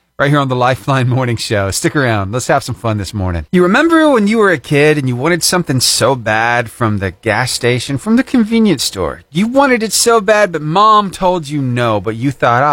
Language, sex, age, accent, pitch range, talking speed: English, male, 40-59, American, 120-195 Hz, 230 wpm